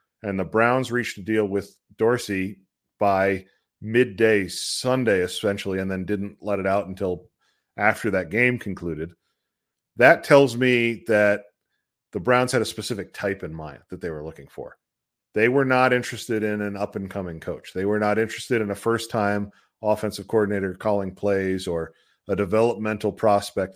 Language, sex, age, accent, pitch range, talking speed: English, male, 40-59, American, 100-120 Hz, 160 wpm